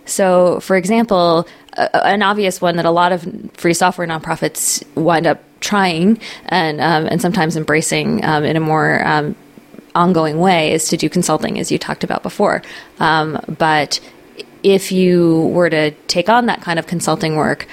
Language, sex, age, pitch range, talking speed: English, female, 20-39, 160-200 Hz, 175 wpm